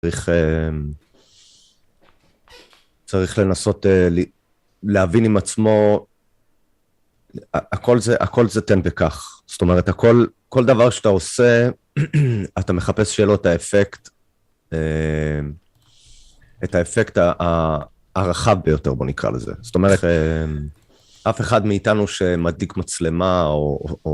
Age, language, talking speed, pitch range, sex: 30-49, Hebrew, 100 wpm, 80-105 Hz, male